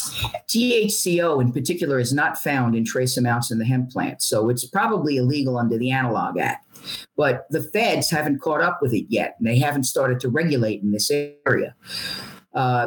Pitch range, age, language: 130-175 Hz, 50-69, English